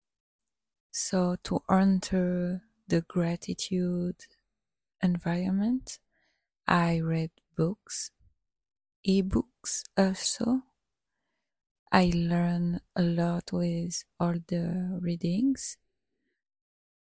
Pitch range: 180-205 Hz